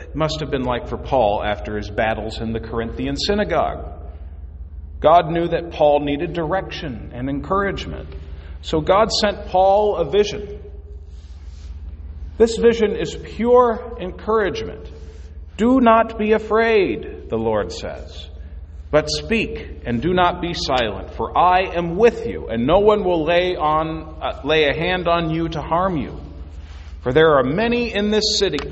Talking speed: 155 wpm